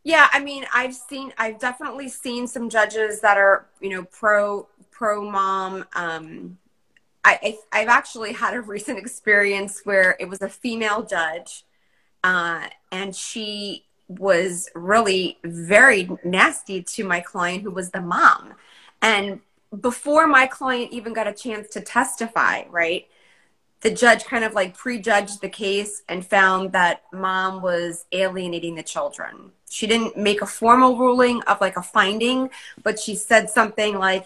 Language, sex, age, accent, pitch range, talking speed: English, female, 30-49, American, 185-240 Hz, 150 wpm